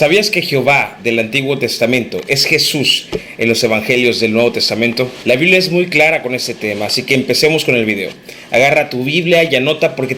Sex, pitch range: male, 120-150 Hz